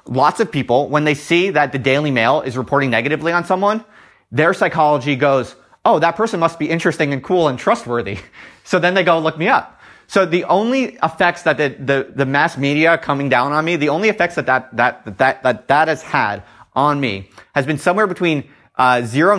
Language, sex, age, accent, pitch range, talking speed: English, male, 30-49, American, 130-170 Hz, 215 wpm